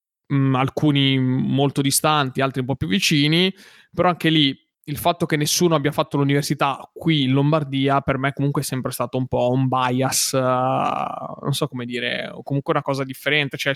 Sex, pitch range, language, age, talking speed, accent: male, 130-155 Hz, Italian, 20-39, 190 wpm, native